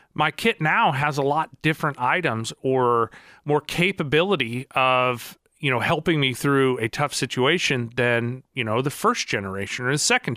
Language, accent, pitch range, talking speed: English, American, 120-165 Hz, 170 wpm